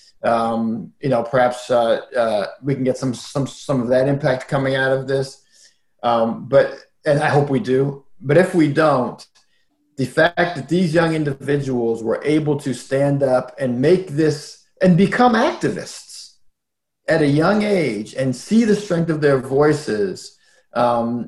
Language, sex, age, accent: English, male, 40-59, American